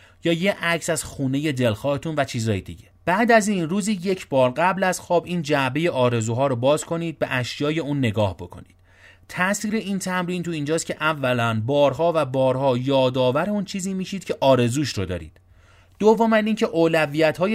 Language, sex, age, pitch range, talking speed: Persian, male, 30-49, 120-170 Hz, 170 wpm